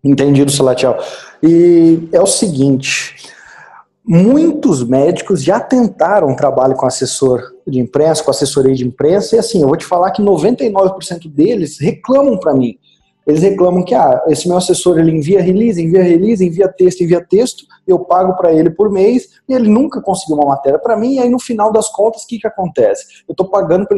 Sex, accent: male, Brazilian